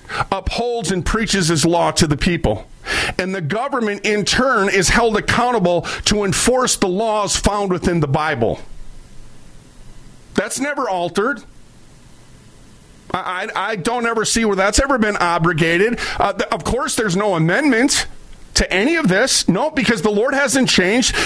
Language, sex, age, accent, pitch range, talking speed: English, male, 40-59, American, 155-200 Hz, 155 wpm